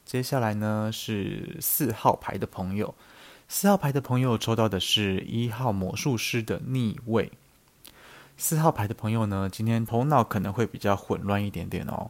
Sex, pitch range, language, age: male, 95-120 Hz, Chinese, 20-39